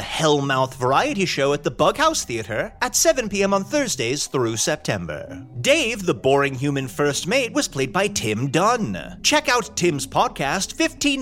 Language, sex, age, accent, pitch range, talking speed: English, male, 30-49, American, 140-235 Hz, 160 wpm